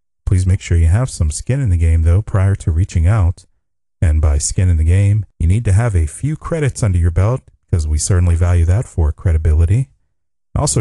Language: English